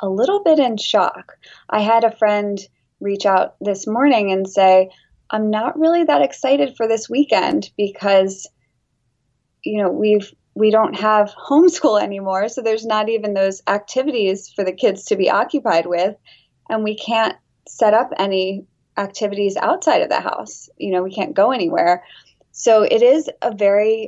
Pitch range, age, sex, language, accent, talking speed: 185-220 Hz, 20-39, female, English, American, 165 wpm